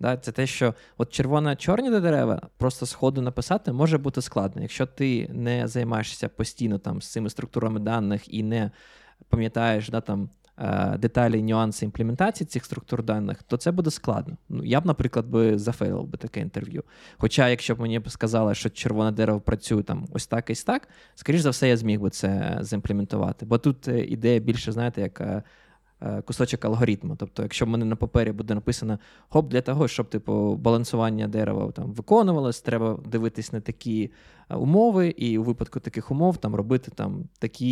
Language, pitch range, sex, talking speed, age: Ukrainian, 110-125 Hz, male, 175 wpm, 20-39